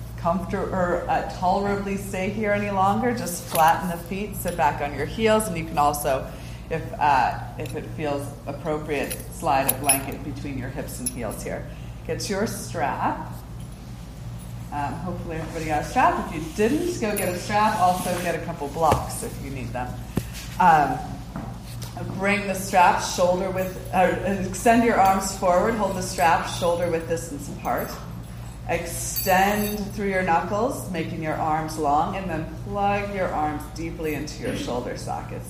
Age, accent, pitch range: 30-49, American, 140-180 Hz